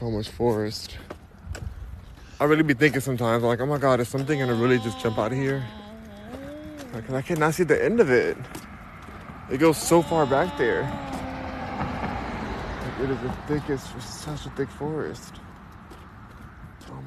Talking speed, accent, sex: 160 wpm, American, male